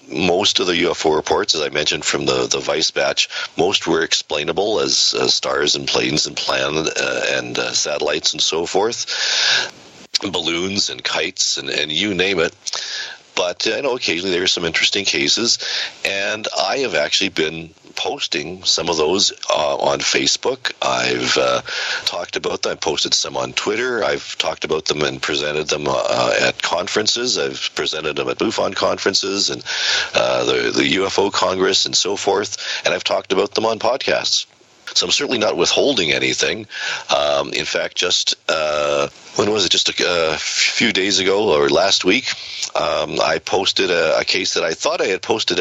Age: 50-69